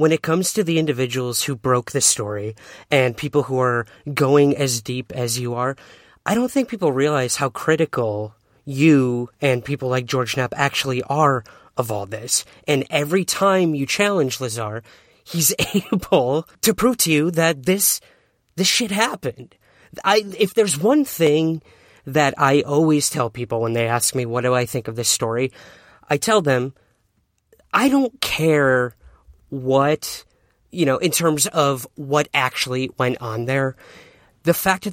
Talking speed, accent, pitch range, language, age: 165 wpm, American, 120-160 Hz, English, 30-49